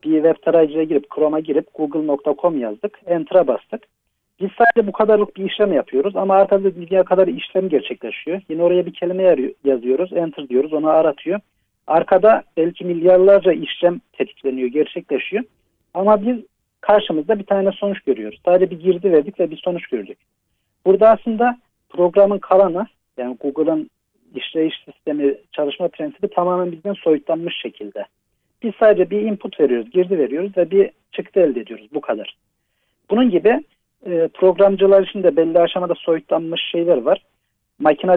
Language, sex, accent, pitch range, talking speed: Turkish, male, native, 160-195 Hz, 145 wpm